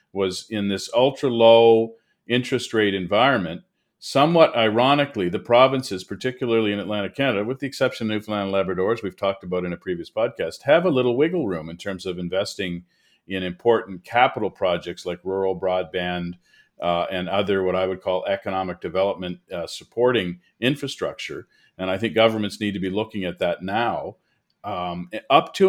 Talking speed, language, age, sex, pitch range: 170 wpm, English, 40-59, male, 95-115 Hz